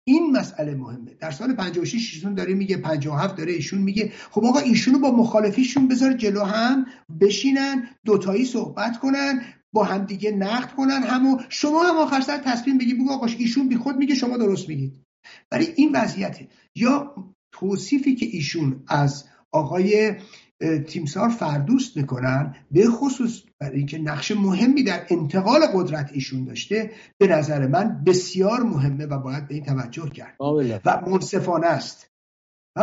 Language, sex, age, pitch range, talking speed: English, male, 50-69, 145-225 Hz, 150 wpm